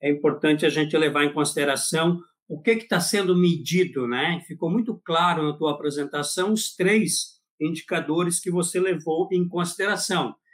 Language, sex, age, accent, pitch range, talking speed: Portuguese, male, 50-69, Brazilian, 155-200 Hz, 160 wpm